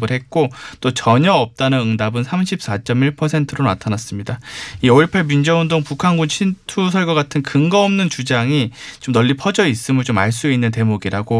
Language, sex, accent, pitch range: Korean, male, native, 115-155 Hz